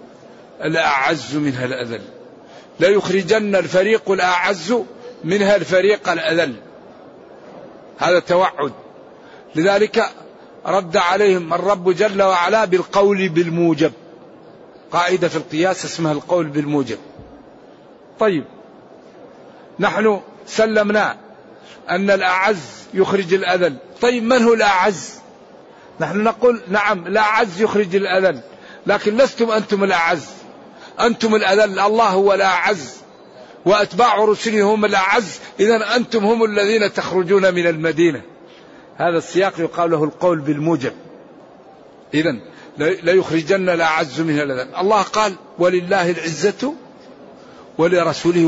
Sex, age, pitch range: male, 50-69, 170-210 Hz